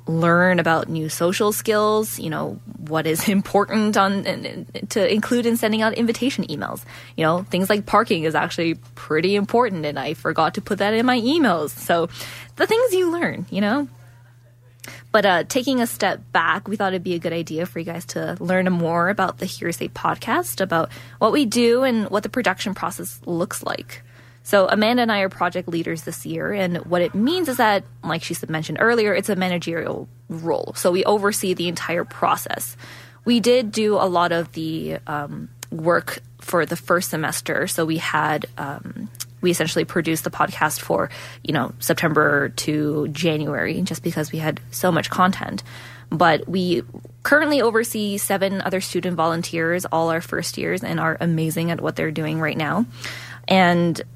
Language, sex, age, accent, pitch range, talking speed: English, female, 20-39, American, 155-205 Hz, 180 wpm